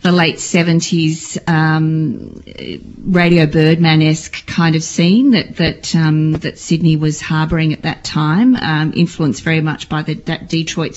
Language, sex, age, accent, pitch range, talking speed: English, female, 40-59, Australian, 150-170 Hz, 150 wpm